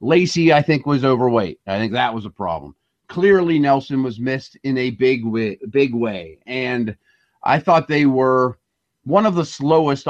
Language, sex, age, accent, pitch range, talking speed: English, male, 30-49, American, 120-160 Hz, 170 wpm